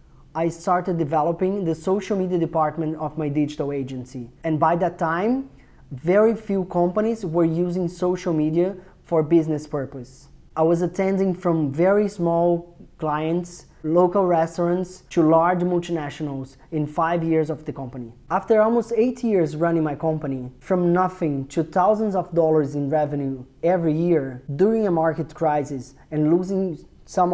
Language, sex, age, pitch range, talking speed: English, male, 20-39, 150-180 Hz, 145 wpm